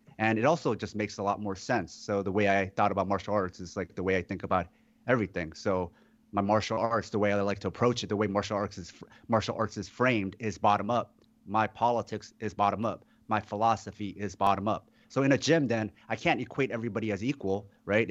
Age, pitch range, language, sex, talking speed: 30-49, 100-120 Hz, English, male, 230 wpm